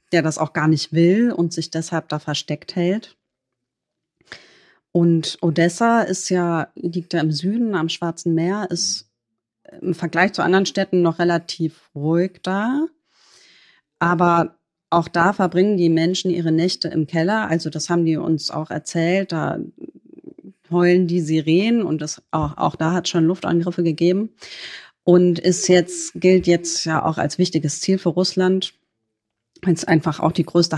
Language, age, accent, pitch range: German, 30-49, German, 160-185 Hz